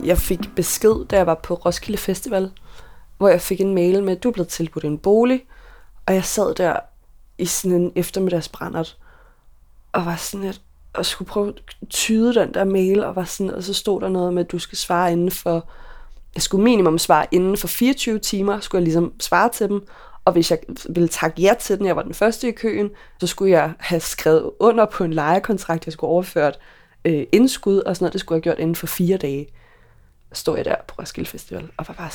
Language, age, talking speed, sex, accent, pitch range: Danish, 20-39, 225 wpm, female, native, 175-220 Hz